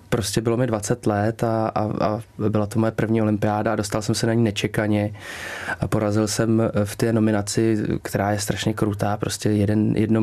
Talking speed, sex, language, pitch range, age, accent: 195 wpm, male, Czech, 105-120 Hz, 20-39, native